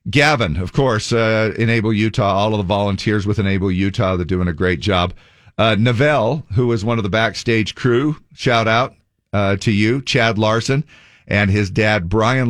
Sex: male